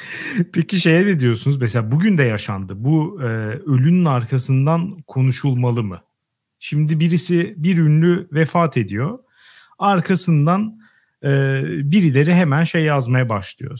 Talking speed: 115 wpm